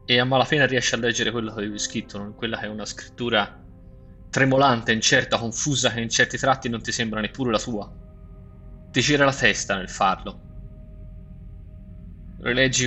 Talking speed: 170 wpm